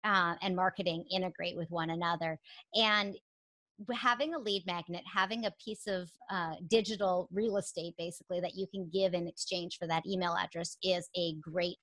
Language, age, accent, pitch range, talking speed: English, 30-49, American, 175-210 Hz, 170 wpm